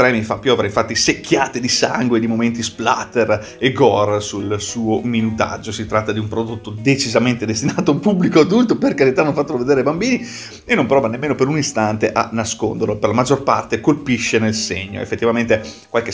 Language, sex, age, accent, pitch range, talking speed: Italian, male, 30-49, native, 110-125 Hz, 190 wpm